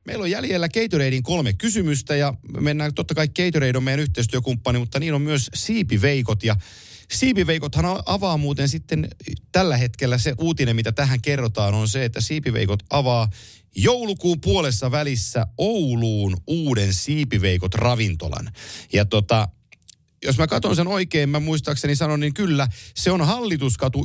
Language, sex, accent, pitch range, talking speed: Finnish, male, native, 110-150 Hz, 145 wpm